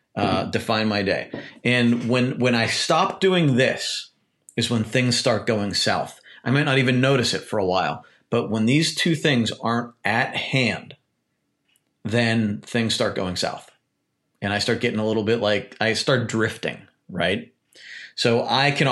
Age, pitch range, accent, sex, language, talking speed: 30-49, 110-140 Hz, American, male, English, 170 wpm